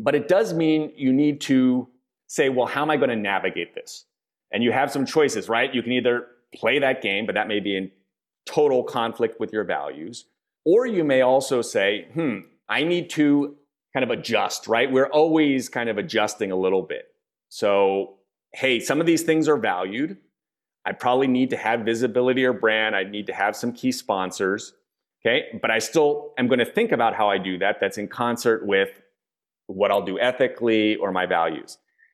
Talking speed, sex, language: 200 wpm, male, English